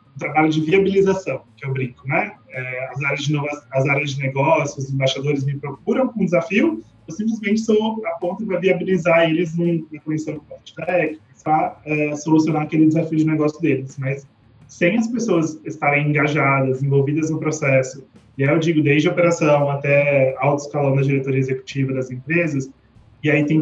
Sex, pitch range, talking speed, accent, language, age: male, 135-155 Hz, 185 wpm, Brazilian, Portuguese, 20-39